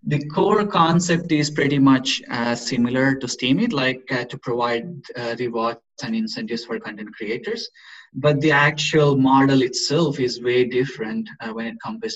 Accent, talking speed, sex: Indian, 165 wpm, male